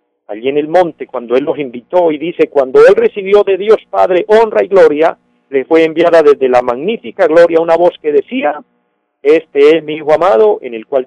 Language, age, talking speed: Spanish, 50-69, 205 wpm